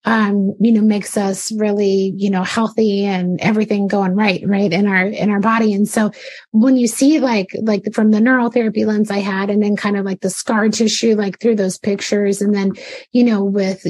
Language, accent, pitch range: English, American, 195-235 Hz